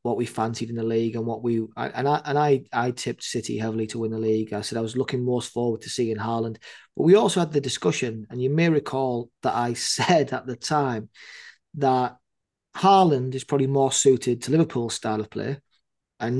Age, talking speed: 30-49, 215 wpm